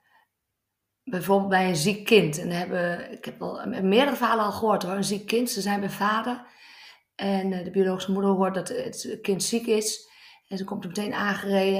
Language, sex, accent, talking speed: Dutch, female, Dutch, 195 wpm